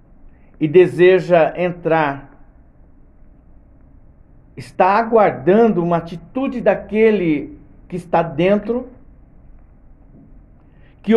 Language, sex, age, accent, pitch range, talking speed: Portuguese, male, 60-79, Brazilian, 140-225 Hz, 65 wpm